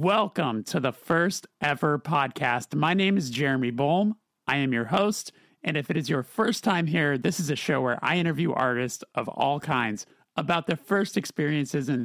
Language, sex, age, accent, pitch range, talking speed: English, male, 30-49, American, 130-170 Hz, 195 wpm